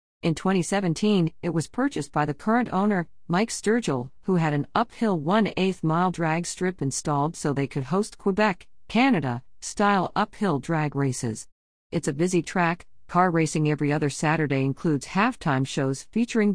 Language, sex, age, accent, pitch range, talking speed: English, female, 50-69, American, 140-185 Hz, 150 wpm